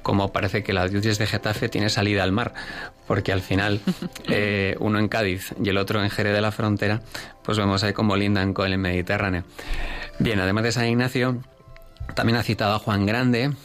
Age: 30-49